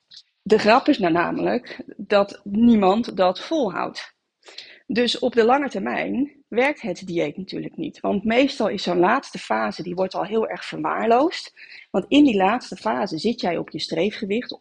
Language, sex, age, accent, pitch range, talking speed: Dutch, female, 30-49, Dutch, 185-255 Hz, 165 wpm